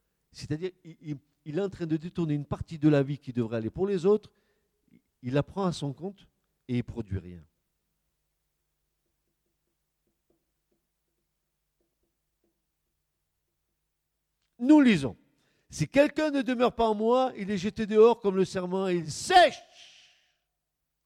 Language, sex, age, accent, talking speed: French, male, 50-69, French, 140 wpm